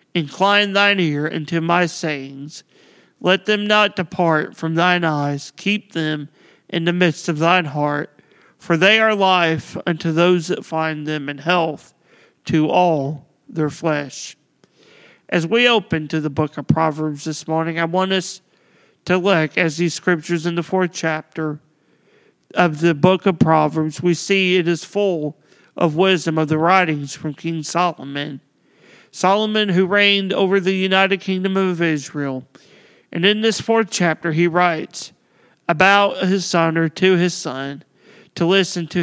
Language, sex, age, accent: English, male, 40-59, American